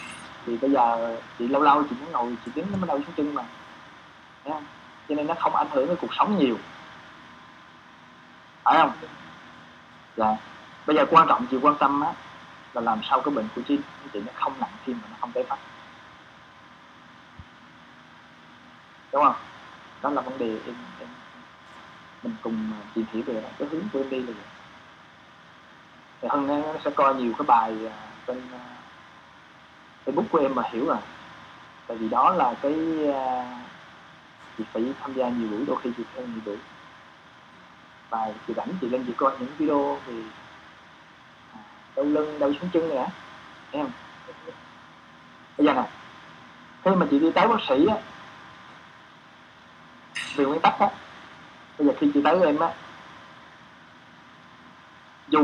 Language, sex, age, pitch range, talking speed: Vietnamese, male, 20-39, 80-120 Hz, 160 wpm